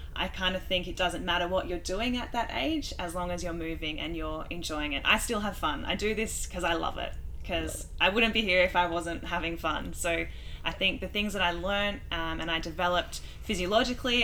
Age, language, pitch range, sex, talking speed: 10-29, English, 165-195 Hz, female, 235 wpm